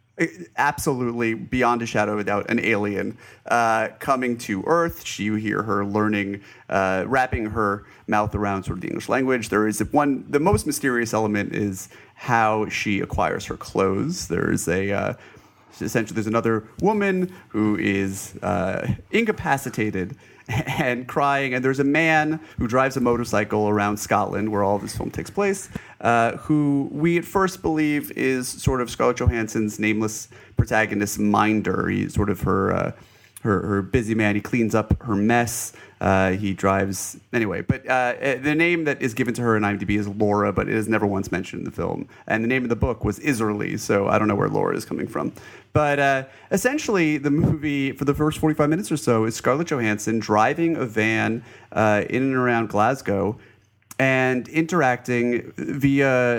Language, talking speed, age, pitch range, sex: English, 175 wpm, 30-49, 105-140 Hz, male